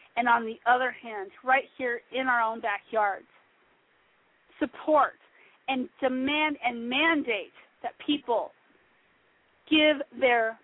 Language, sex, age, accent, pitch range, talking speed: English, female, 40-59, American, 230-320 Hz, 115 wpm